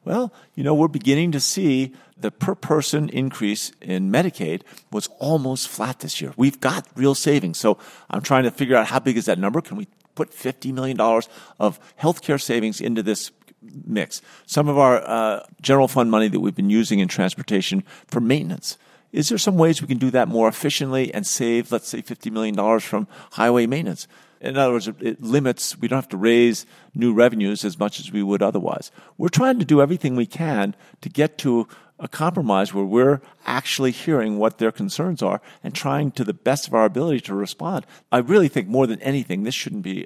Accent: American